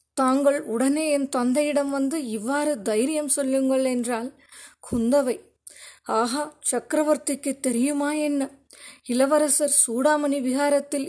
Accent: native